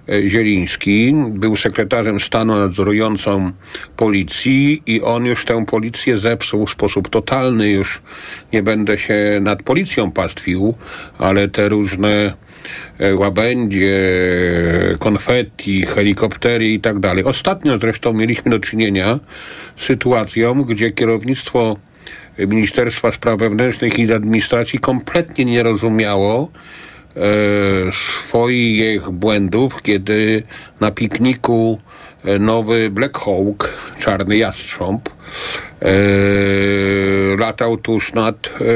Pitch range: 100-115 Hz